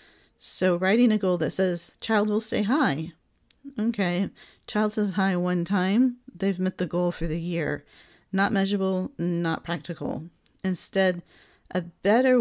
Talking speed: 145 wpm